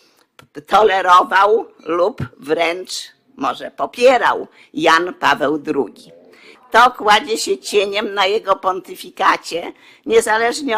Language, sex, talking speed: Polish, female, 90 wpm